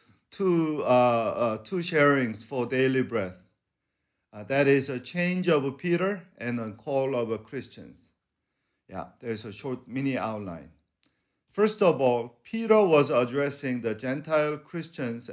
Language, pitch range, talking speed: English, 125-160 Hz, 135 wpm